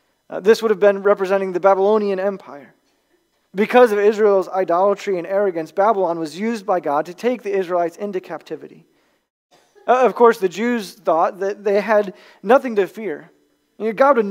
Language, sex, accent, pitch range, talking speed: English, male, American, 190-235 Hz, 175 wpm